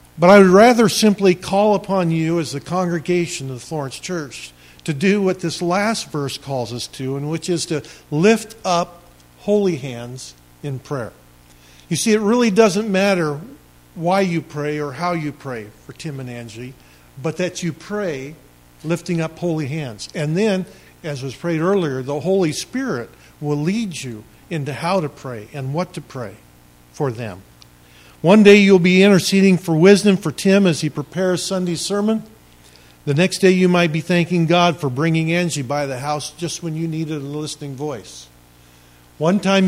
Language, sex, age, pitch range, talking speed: English, male, 50-69, 140-185 Hz, 180 wpm